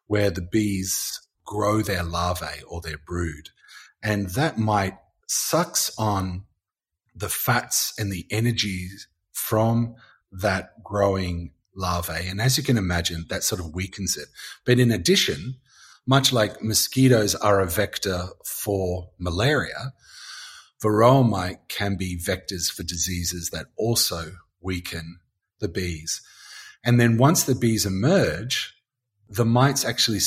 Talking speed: 130 wpm